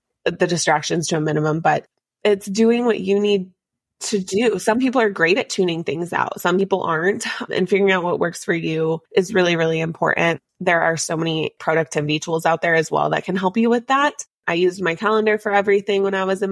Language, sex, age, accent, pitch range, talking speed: English, female, 20-39, American, 165-200 Hz, 220 wpm